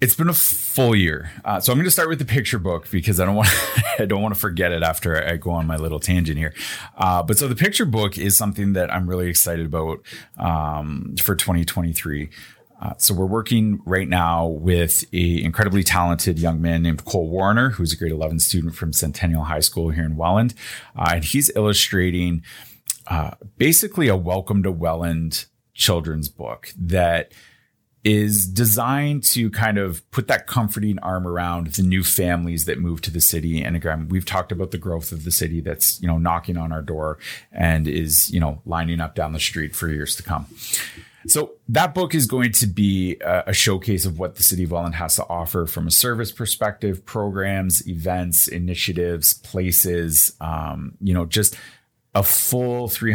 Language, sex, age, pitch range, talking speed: English, male, 30-49, 85-105 Hz, 195 wpm